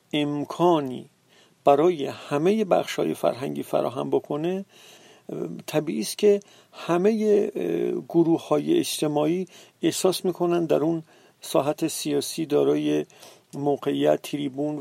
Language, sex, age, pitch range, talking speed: Persian, male, 50-69, 145-180 Hz, 95 wpm